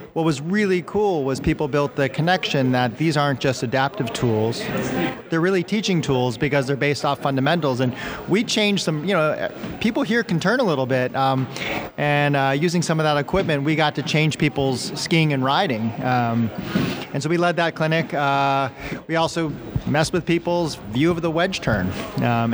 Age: 30-49